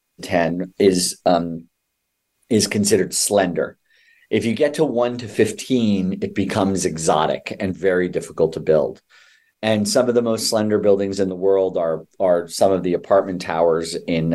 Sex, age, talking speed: male, 40-59, 165 wpm